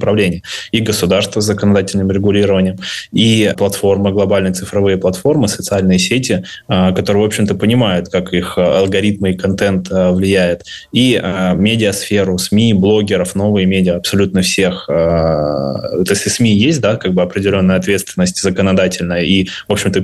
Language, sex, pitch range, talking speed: Russian, male, 90-100 Hz, 130 wpm